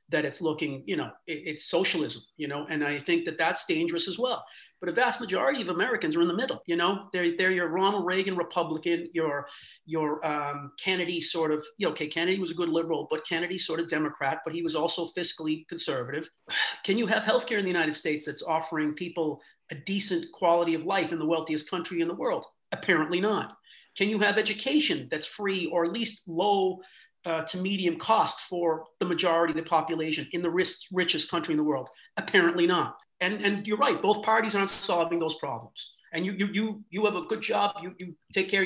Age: 40-59